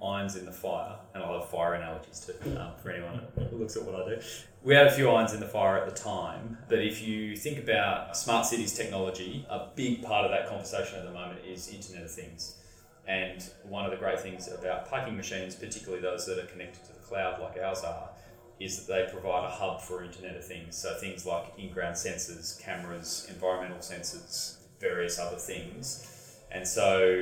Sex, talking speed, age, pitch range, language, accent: male, 210 wpm, 20-39, 90-110 Hz, English, Australian